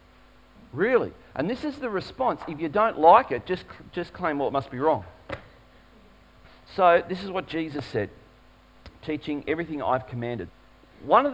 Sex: male